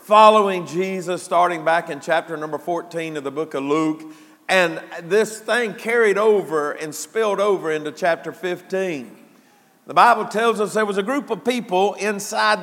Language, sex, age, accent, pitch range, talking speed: English, male, 50-69, American, 165-215 Hz, 165 wpm